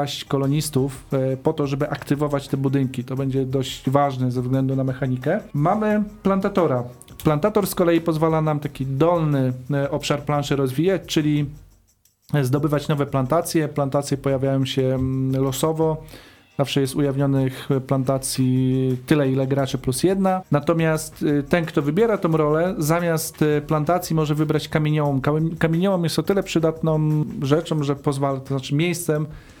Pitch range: 140-160 Hz